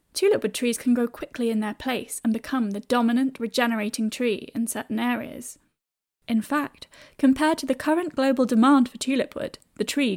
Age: 10-29